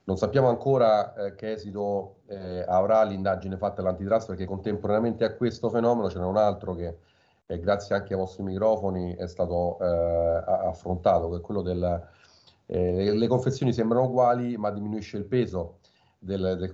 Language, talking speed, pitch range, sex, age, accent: Italian, 160 wpm, 90-105 Hz, male, 40-59, native